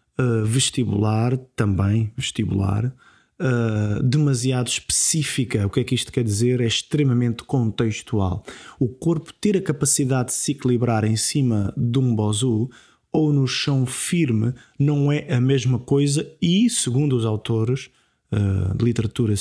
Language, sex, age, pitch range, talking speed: Portuguese, male, 20-39, 120-155 Hz, 135 wpm